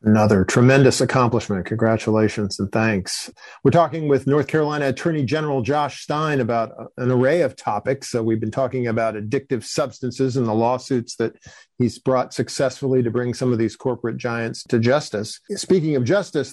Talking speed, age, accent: 165 wpm, 50-69, American